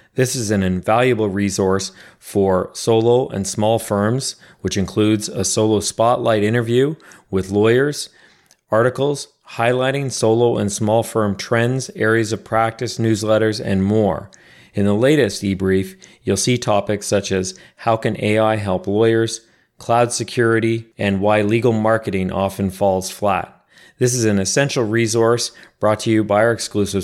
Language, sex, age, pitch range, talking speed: English, male, 40-59, 100-115 Hz, 145 wpm